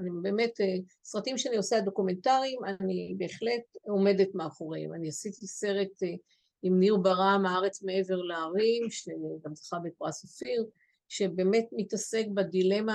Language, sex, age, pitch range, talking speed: English, female, 50-69, 185-245 Hz, 120 wpm